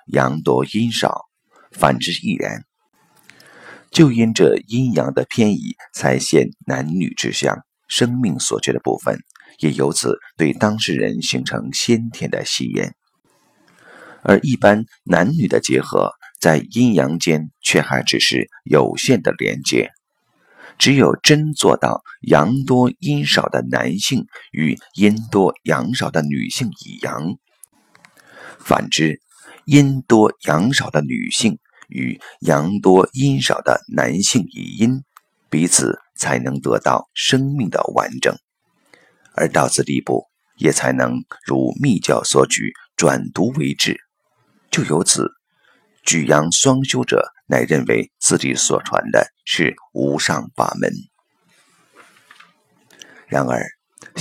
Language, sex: Chinese, male